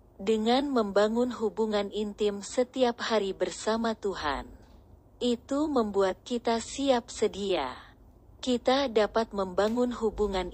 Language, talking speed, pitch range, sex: Indonesian, 95 wpm, 185-230 Hz, female